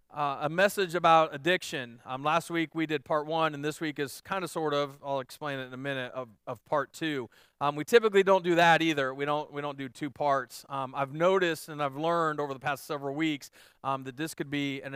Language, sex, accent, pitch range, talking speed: English, male, American, 140-185 Hz, 245 wpm